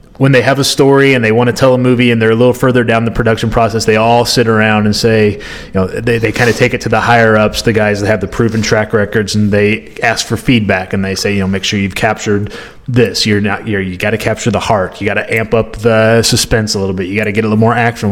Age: 30-49